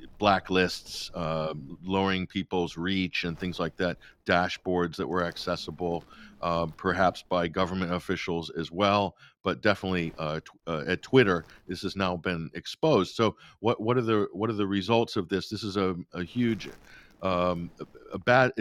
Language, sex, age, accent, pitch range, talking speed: English, male, 50-69, American, 90-100 Hz, 165 wpm